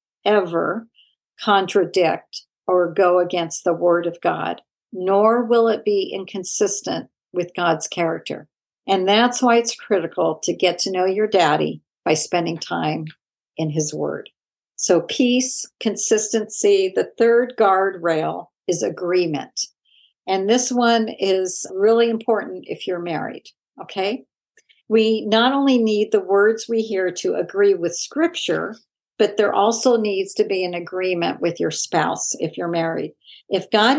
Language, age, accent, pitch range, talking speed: English, 50-69, American, 175-225 Hz, 140 wpm